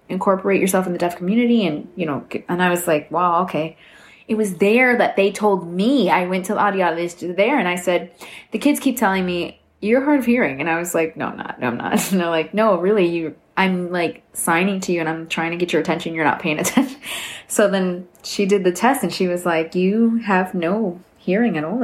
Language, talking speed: English, 235 wpm